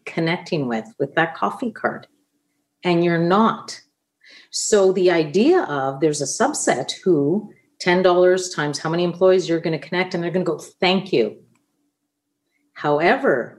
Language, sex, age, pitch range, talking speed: English, female, 40-59, 155-195 Hz, 155 wpm